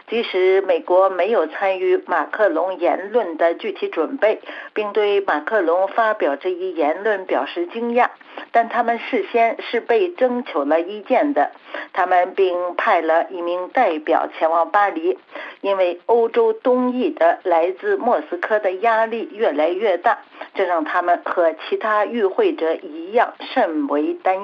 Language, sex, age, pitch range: Chinese, female, 50-69, 180-250 Hz